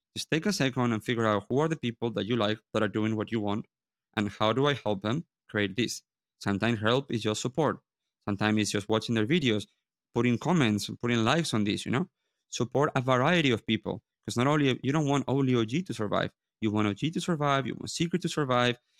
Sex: male